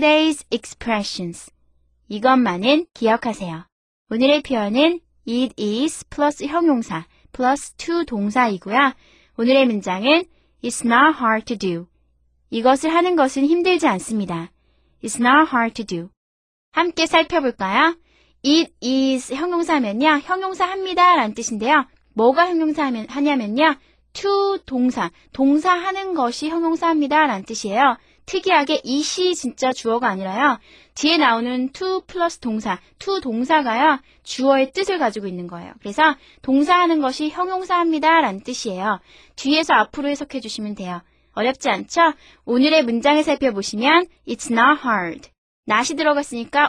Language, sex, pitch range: Korean, female, 225-315 Hz